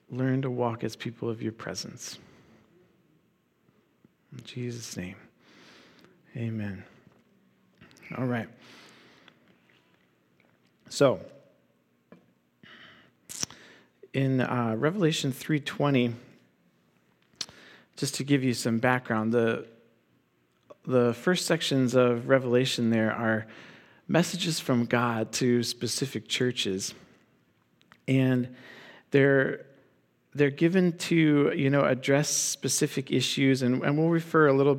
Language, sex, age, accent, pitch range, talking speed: English, male, 40-59, American, 115-140 Hz, 95 wpm